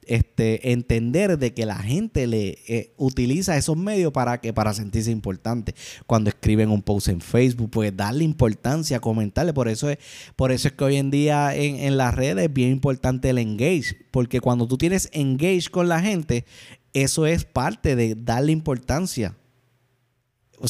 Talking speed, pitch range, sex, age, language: 175 wpm, 115-150 Hz, male, 20-39, Spanish